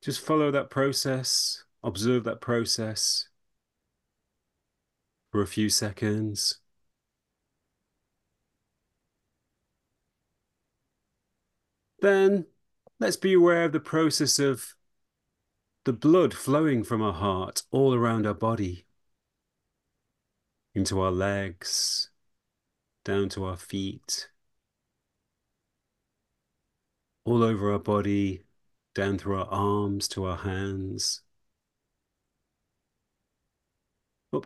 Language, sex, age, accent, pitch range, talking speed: English, male, 30-49, British, 95-130 Hz, 85 wpm